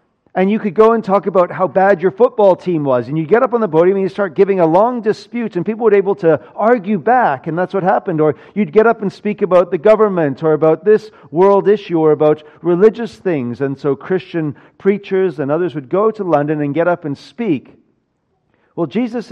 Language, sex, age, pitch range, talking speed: English, male, 40-59, 140-195 Hz, 225 wpm